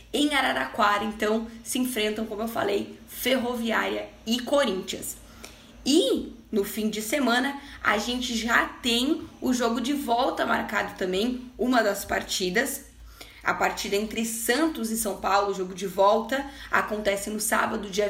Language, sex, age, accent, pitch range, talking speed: Portuguese, female, 10-29, Brazilian, 205-240 Hz, 145 wpm